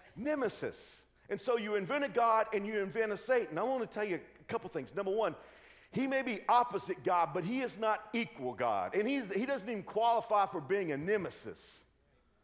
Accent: American